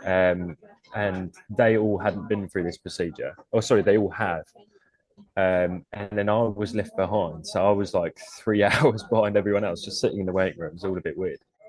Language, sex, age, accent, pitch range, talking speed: English, male, 20-39, British, 95-115 Hz, 205 wpm